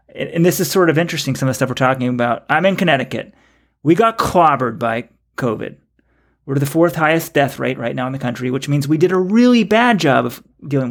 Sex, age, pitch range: male, 30-49, 130-175 Hz